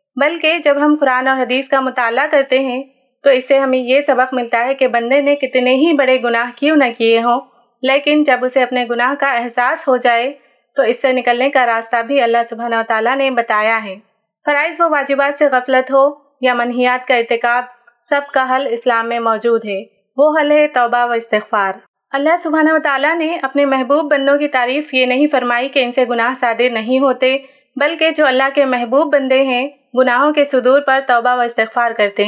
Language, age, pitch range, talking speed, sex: Urdu, 30-49, 245-285 Hz, 205 wpm, female